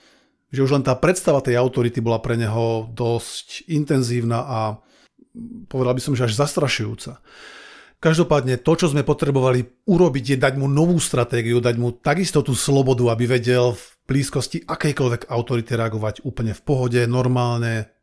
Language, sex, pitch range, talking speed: Slovak, male, 120-145 Hz, 155 wpm